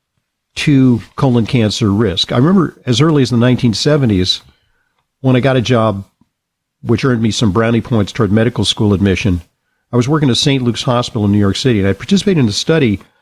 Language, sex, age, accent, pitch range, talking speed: English, male, 50-69, American, 105-135 Hz, 195 wpm